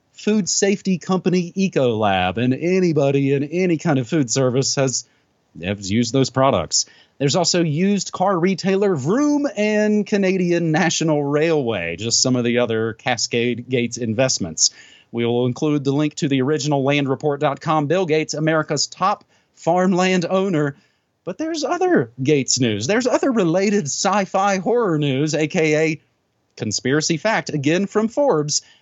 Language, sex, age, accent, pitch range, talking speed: English, male, 30-49, American, 130-190 Hz, 135 wpm